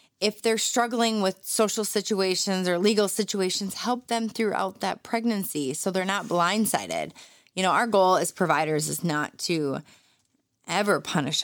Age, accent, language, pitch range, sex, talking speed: 20-39, American, English, 160-210 Hz, female, 150 wpm